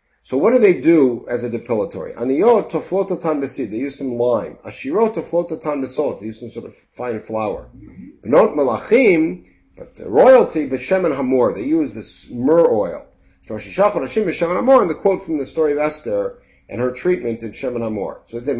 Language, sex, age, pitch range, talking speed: English, male, 60-79, 125-195 Hz, 140 wpm